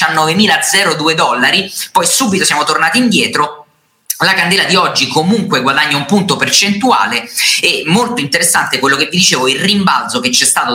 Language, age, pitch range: Italian, 20-39, 140-220 Hz